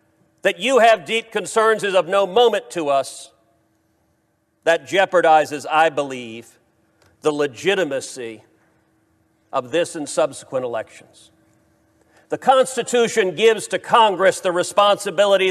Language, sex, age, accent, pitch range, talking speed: English, male, 50-69, American, 165-210 Hz, 110 wpm